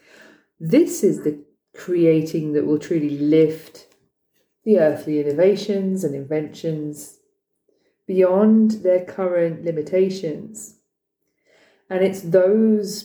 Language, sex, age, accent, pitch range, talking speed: English, female, 40-59, British, 155-215 Hz, 90 wpm